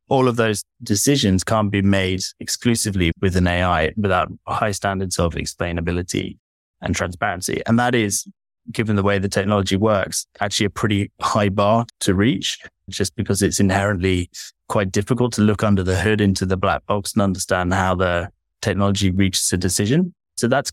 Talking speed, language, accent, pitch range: 170 wpm, English, British, 95-110 Hz